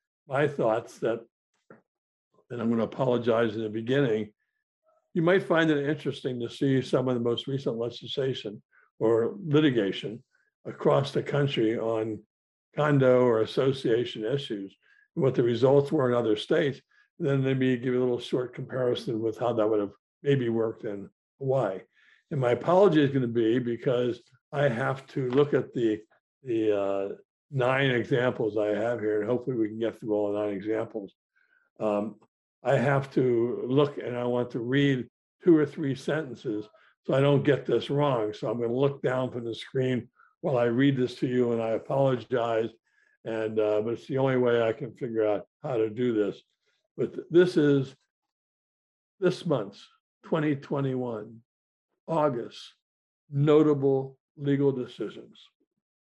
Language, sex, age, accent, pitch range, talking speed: English, male, 60-79, American, 115-140 Hz, 160 wpm